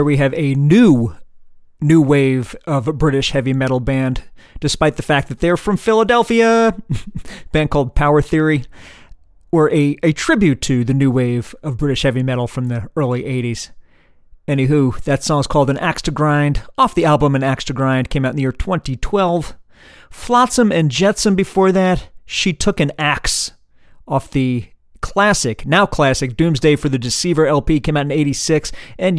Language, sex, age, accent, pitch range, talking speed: English, male, 40-59, American, 130-160 Hz, 175 wpm